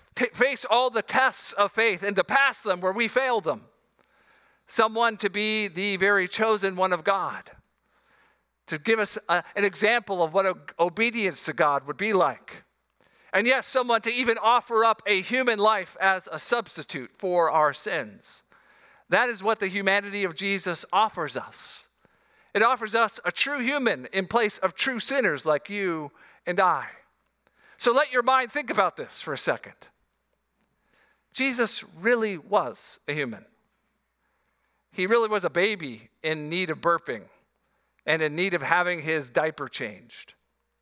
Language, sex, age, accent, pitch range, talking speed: English, male, 50-69, American, 180-230 Hz, 160 wpm